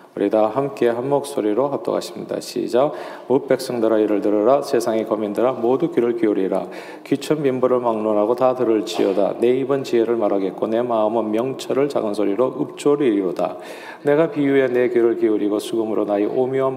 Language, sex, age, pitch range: Korean, male, 40-59, 115-145 Hz